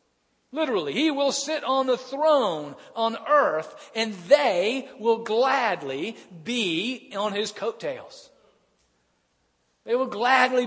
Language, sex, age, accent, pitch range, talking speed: English, male, 40-59, American, 175-275 Hz, 110 wpm